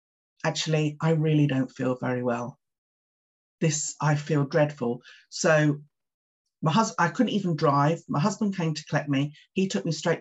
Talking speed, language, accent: 165 wpm, English, British